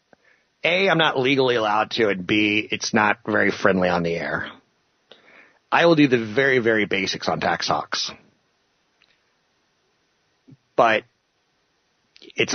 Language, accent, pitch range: English, American, 110-135 Hz